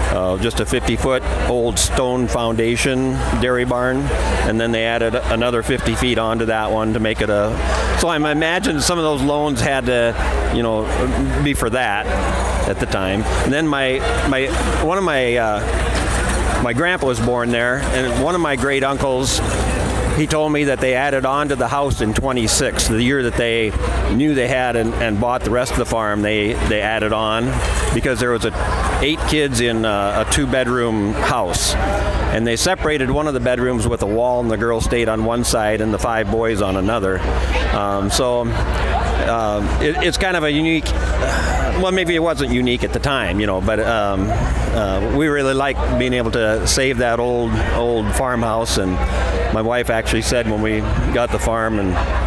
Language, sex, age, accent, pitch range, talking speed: English, male, 50-69, American, 100-130 Hz, 195 wpm